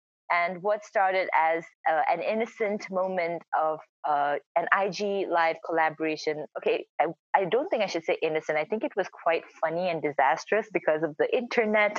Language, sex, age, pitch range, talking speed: English, female, 20-39, 155-205 Hz, 175 wpm